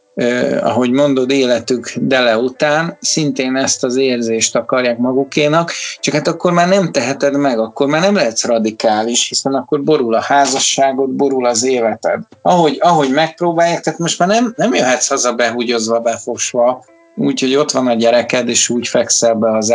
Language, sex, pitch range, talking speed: Hungarian, male, 120-155 Hz, 165 wpm